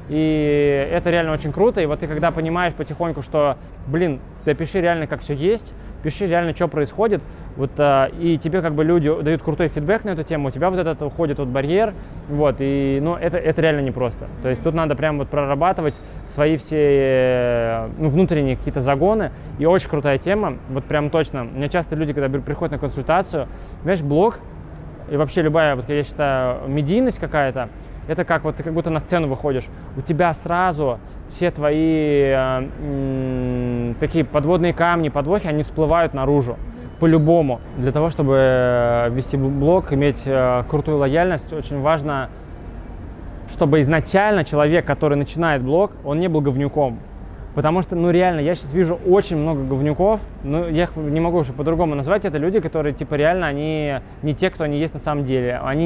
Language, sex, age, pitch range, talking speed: Russian, male, 20-39, 135-165 Hz, 180 wpm